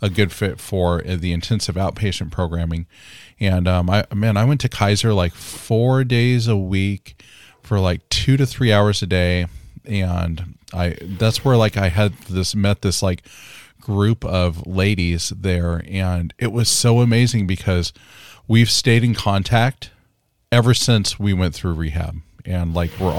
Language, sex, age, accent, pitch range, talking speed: English, male, 40-59, American, 90-115 Hz, 165 wpm